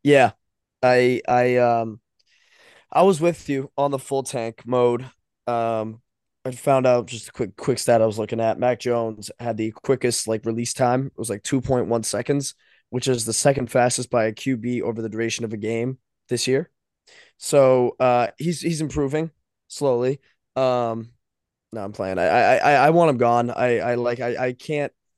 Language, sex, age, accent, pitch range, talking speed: English, male, 20-39, American, 115-130 Hz, 190 wpm